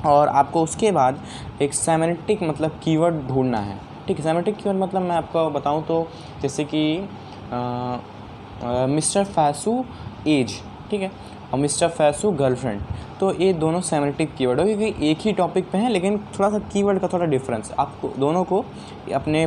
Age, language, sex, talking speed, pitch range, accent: 20-39, Hindi, male, 165 wpm, 130-180 Hz, native